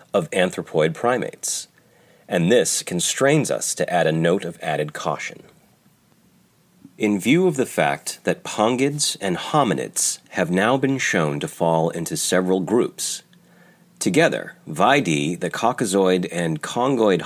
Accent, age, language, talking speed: American, 40-59, English, 130 wpm